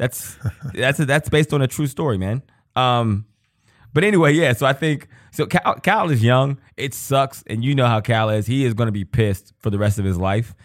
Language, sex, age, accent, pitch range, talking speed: English, male, 20-39, American, 105-125 Hz, 235 wpm